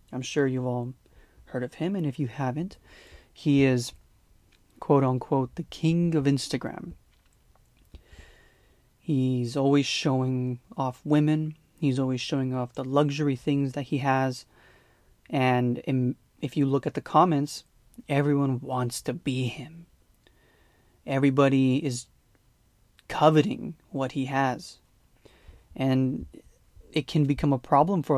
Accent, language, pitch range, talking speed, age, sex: American, English, 130-150 Hz, 125 wpm, 30-49, male